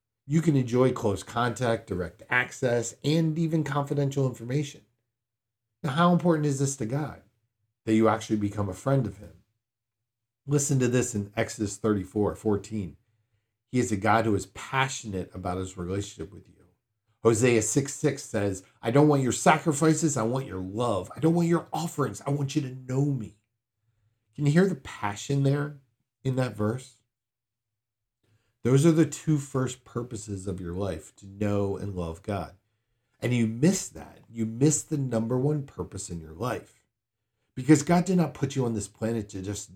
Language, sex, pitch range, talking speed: English, male, 105-135 Hz, 175 wpm